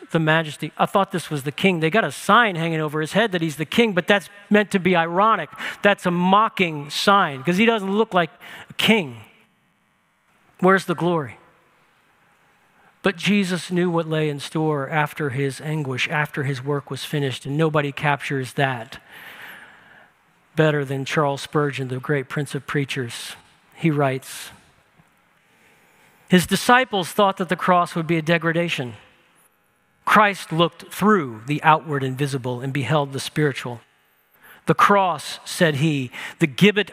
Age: 50-69